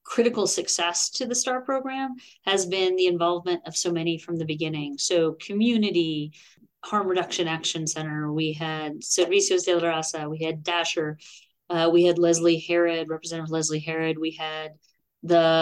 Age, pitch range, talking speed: 30-49, 165-200 Hz, 160 wpm